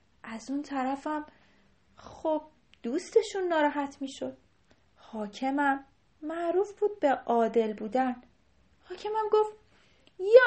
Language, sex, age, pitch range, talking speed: Persian, female, 30-49, 230-360 Hz, 90 wpm